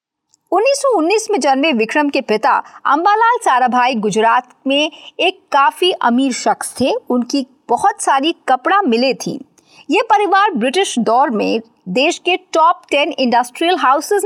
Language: Hindi